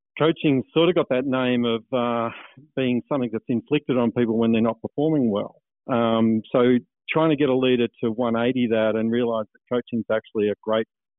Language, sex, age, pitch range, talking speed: English, male, 50-69, 110-130 Hz, 200 wpm